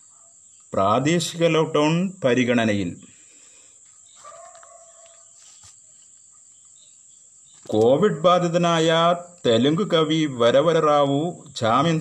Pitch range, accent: 130-165 Hz, native